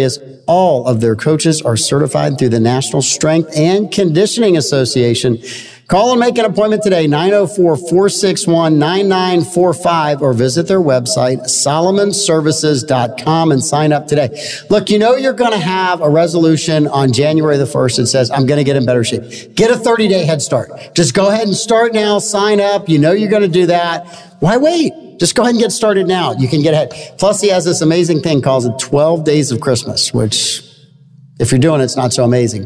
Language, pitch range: English, 130-185 Hz